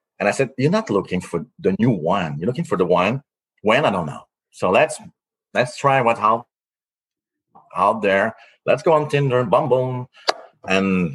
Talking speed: 190 wpm